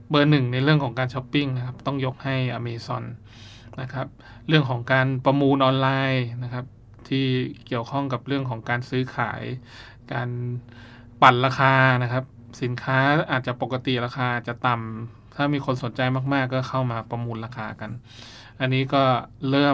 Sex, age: male, 20-39